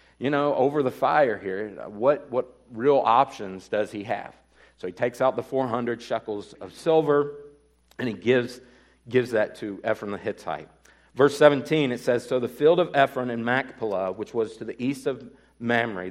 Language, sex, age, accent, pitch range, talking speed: English, male, 50-69, American, 110-140 Hz, 185 wpm